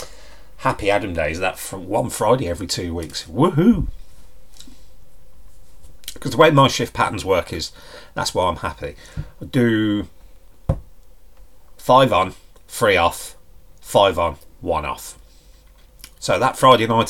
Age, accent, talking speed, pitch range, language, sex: 30-49, British, 135 wpm, 80-115 Hz, English, male